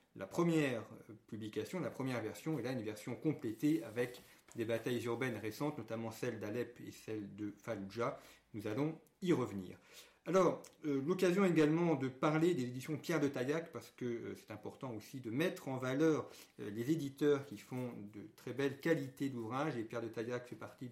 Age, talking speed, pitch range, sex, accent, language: 40-59, 185 wpm, 110-145 Hz, male, French, French